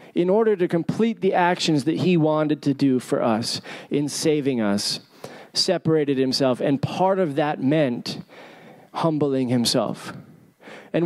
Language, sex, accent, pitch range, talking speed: English, male, American, 155-210 Hz, 140 wpm